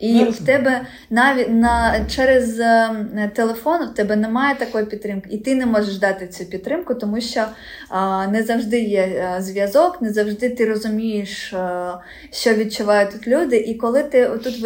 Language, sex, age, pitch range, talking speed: Ukrainian, female, 20-39, 200-245 Hz, 160 wpm